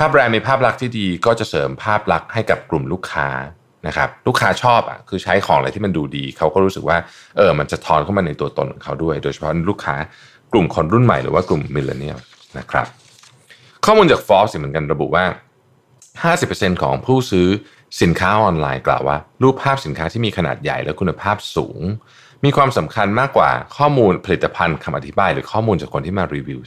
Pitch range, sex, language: 80-130 Hz, male, Thai